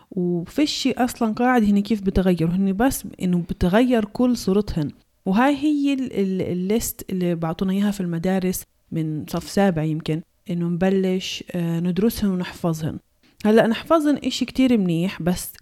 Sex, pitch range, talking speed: female, 180-235 Hz, 135 wpm